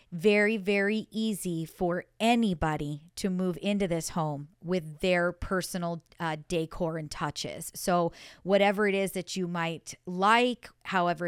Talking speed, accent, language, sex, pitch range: 140 wpm, American, English, female, 170-195 Hz